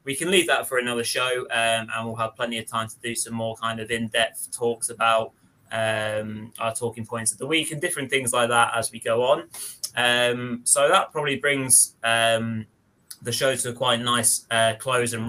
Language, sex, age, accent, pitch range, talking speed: English, male, 20-39, British, 115-135 Hz, 210 wpm